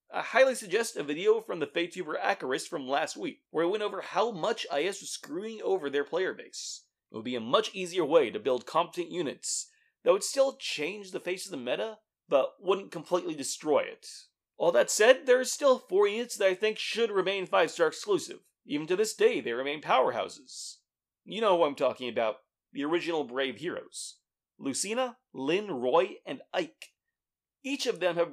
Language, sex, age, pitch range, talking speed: English, male, 30-49, 175-295 Hz, 195 wpm